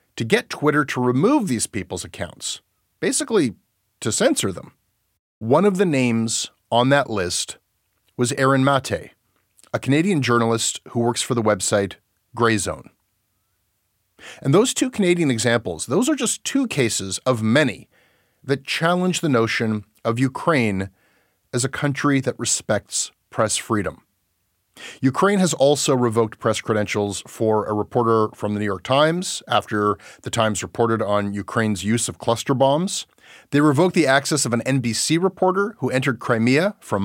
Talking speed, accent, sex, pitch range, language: 150 wpm, American, male, 105-145 Hz, English